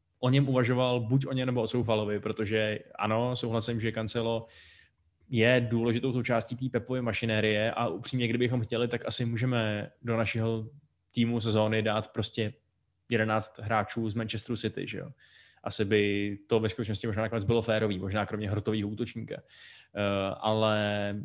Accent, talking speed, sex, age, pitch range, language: native, 155 wpm, male, 20-39, 110-130 Hz, Czech